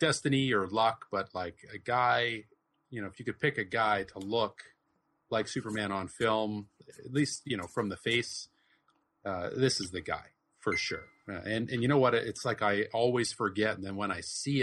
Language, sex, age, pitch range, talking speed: English, male, 30-49, 95-115 Hz, 210 wpm